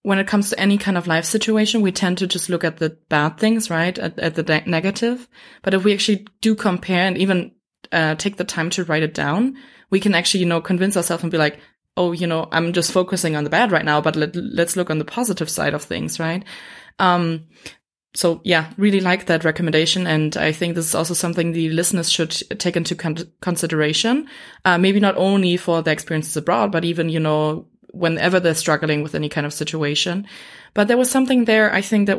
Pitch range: 160-195 Hz